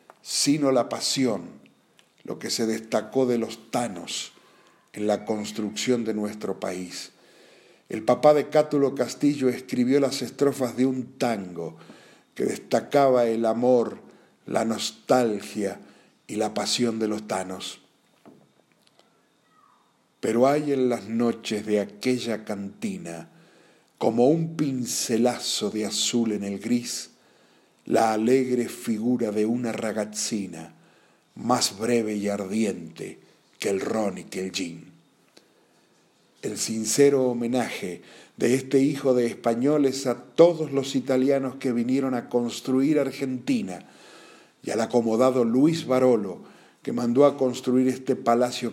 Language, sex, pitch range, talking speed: Spanish, male, 110-130 Hz, 125 wpm